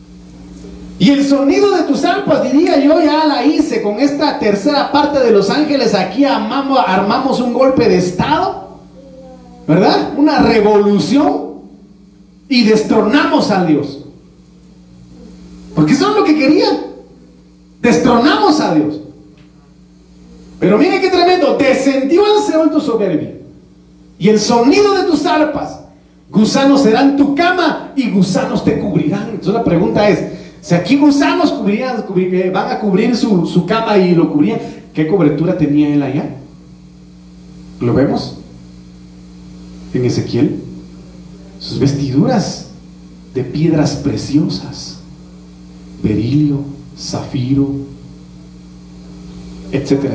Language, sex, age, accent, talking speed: Spanish, male, 40-59, Mexican, 115 wpm